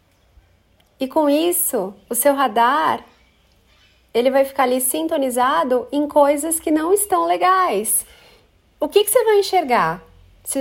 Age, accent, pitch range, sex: 30-49, Brazilian, 230-320 Hz, female